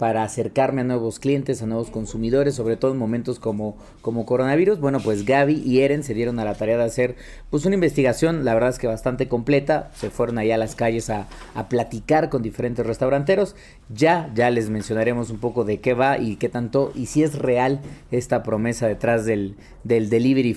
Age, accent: 30-49, Mexican